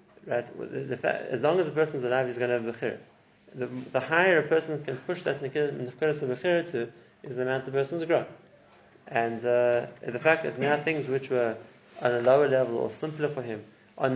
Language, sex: English, male